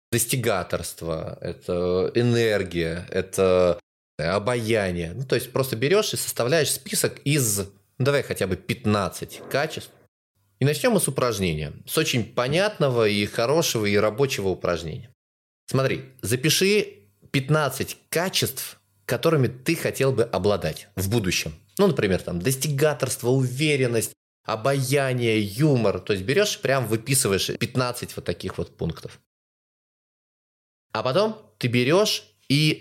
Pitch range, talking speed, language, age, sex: 95-130 Hz, 125 wpm, Russian, 20-39, male